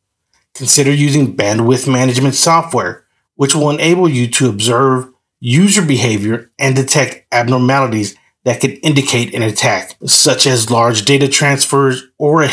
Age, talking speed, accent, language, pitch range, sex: 30-49, 135 wpm, American, English, 115-145 Hz, male